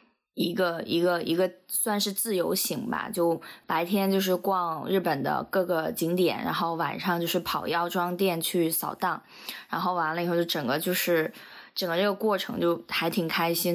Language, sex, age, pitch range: Chinese, female, 20-39, 170-195 Hz